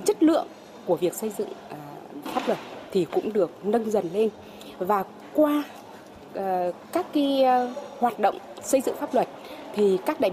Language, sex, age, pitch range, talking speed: Vietnamese, female, 20-39, 185-255 Hz, 155 wpm